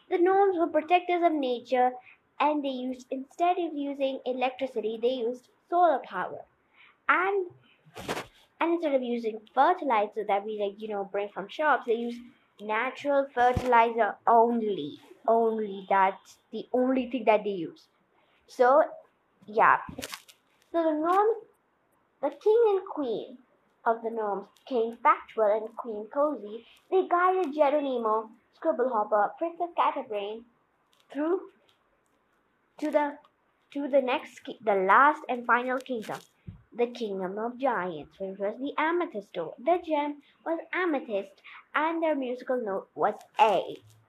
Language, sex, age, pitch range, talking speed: English, female, 20-39, 225-320 Hz, 130 wpm